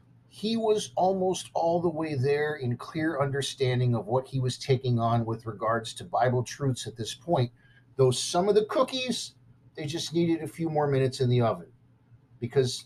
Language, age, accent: English, 50-69, American